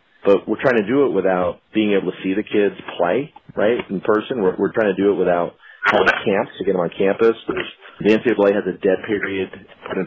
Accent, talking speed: American, 230 wpm